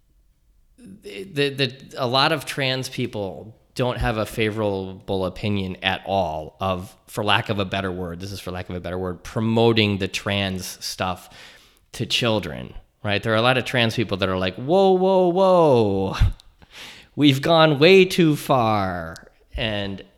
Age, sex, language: 20-39, male, English